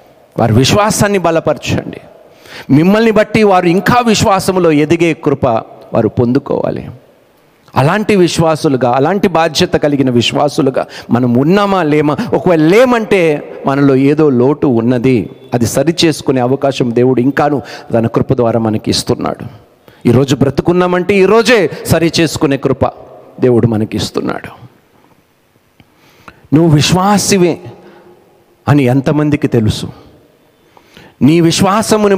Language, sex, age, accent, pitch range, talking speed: Telugu, male, 50-69, native, 135-185 Hz, 100 wpm